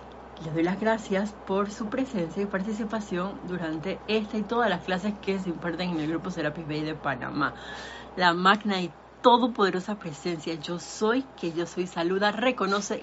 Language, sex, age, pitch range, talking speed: Spanish, female, 30-49, 165-200 Hz, 170 wpm